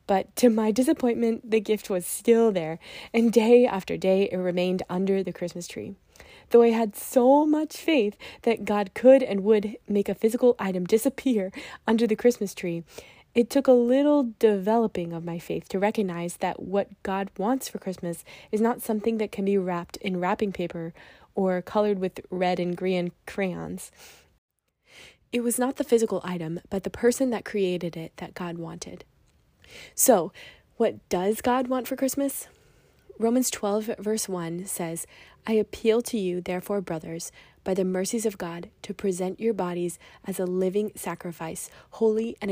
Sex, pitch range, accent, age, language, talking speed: female, 180-225 Hz, American, 20-39, English, 170 wpm